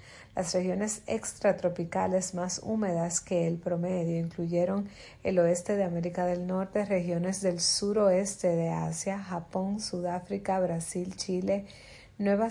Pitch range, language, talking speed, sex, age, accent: 175-200 Hz, Spanish, 120 wpm, female, 30-49, American